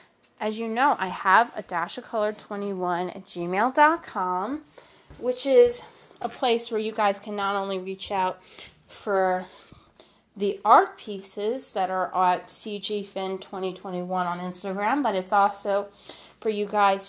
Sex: female